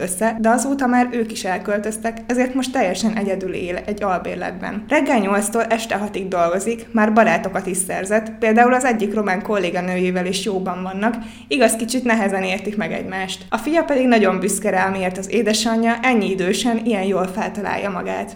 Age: 20-39